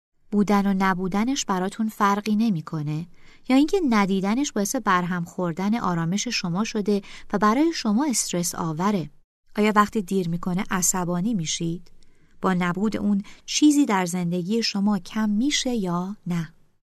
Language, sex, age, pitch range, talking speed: Persian, female, 30-49, 180-240 Hz, 130 wpm